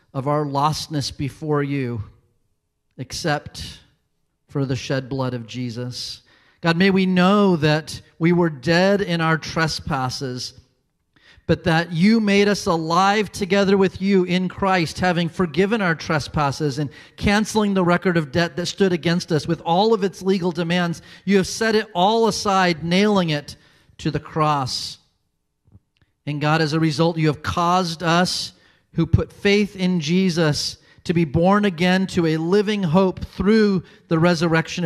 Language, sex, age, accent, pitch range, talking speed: English, male, 40-59, American, 150-185 Hz, 155 wpm